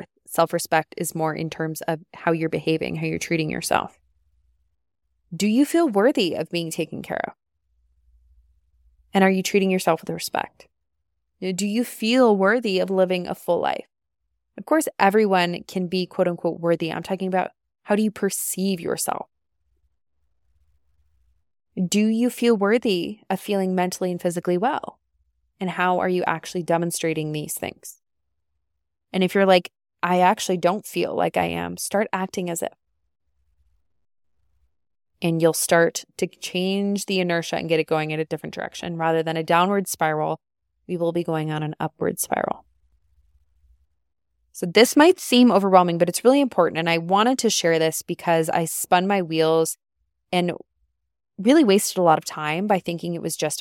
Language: English